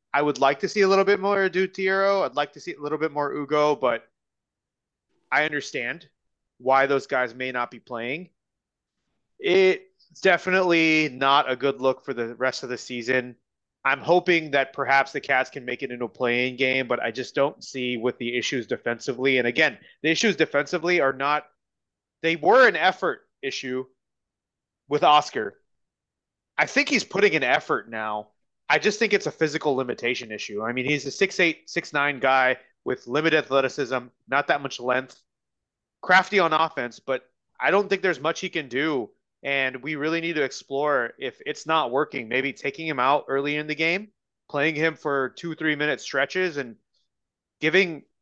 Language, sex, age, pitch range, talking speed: English, male, 30-49, 130-170 Hz, 180 wpm